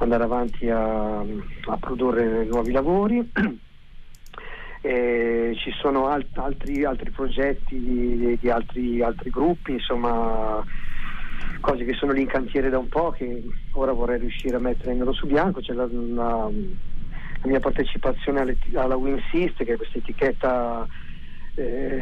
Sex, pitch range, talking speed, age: male, 120-145 Hz, 140 wpm, 40-59